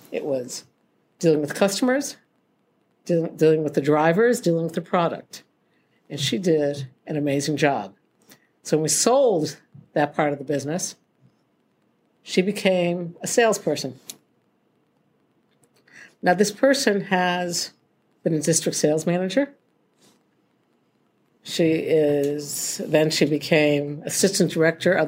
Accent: American